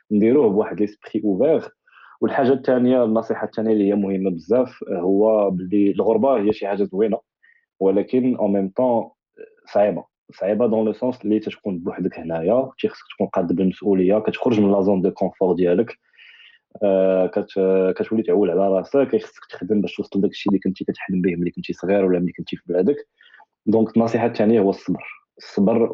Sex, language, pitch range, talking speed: male, Arabic, 95-110 Hz, 165 wpm